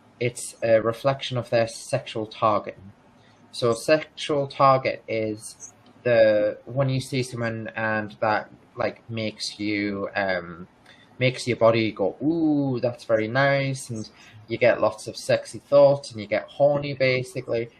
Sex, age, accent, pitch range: male, 20-39, British, 110-135 Hz